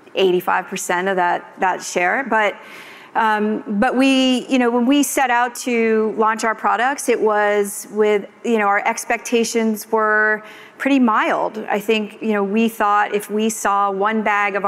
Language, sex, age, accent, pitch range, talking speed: English, female, 40-59, American, 195-225 Hz, 170 wpm